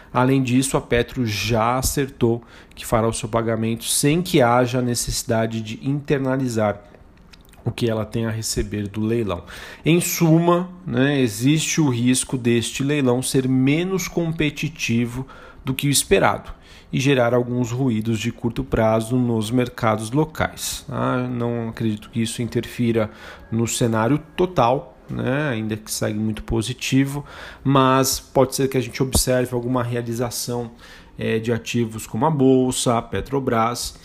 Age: 40-59